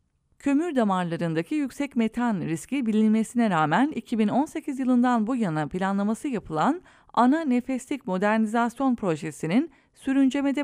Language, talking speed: English, 100 wpm